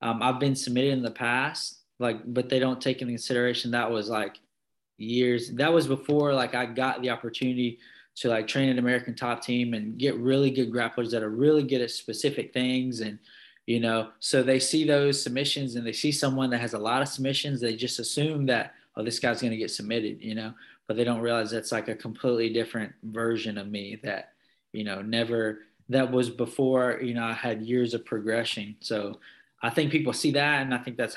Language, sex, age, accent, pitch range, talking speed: English, male, 20-39, American, 115-130 Hz, 215 wpm